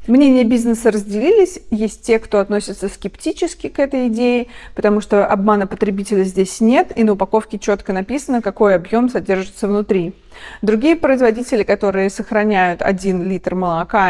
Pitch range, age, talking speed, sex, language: 195-240 Hz, 30-49, 140 wpm, female, Russian